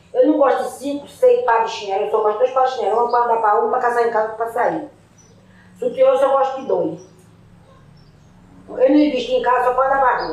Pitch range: 175-240 Hz